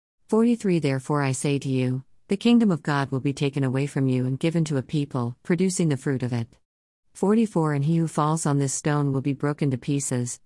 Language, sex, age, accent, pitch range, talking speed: English, female, 50-69, American, 130-160 Hz, 225 wpm